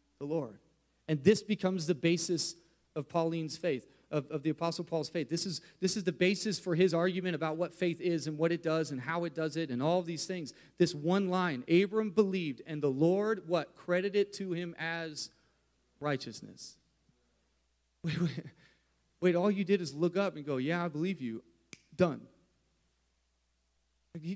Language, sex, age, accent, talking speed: English, male, 30-49, American, 180 wpm